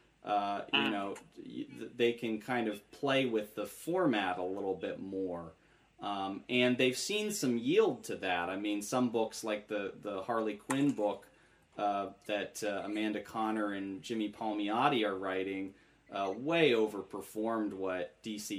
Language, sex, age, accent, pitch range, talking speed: English, male, 30-49, American, 105-125 Hz, 155 wpm